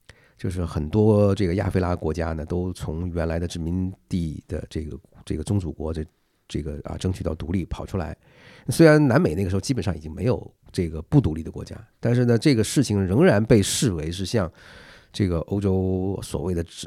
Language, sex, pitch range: Chinese, male, 85-115 Hz